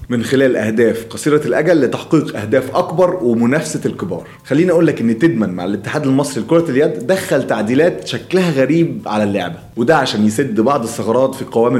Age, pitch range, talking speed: 30-49, 110-155 Hz, 170 wpm